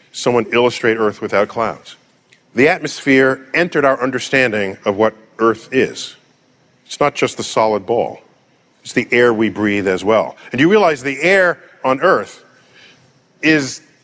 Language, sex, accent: English, male, American